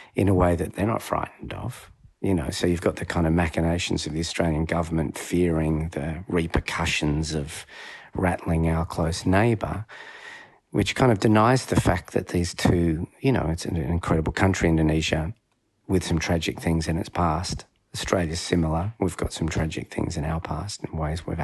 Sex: male